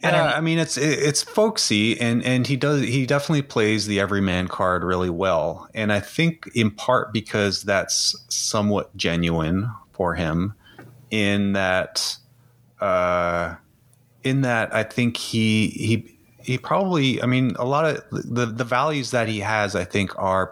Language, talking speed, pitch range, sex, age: English, 160 wpm, 85-120 Hz, male, 30-49